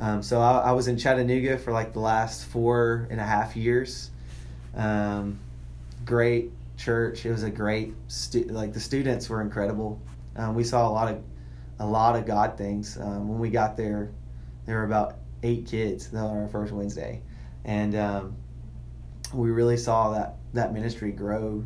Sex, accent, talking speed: male, American, 175 wpm